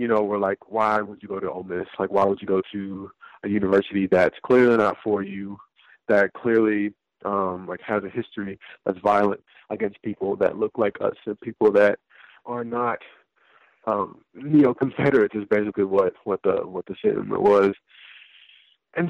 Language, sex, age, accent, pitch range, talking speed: English, male, 30-49, American, 100-115 Hz, 185 wpm